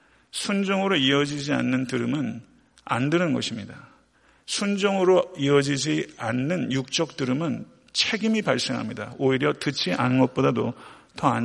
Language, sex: Korean, male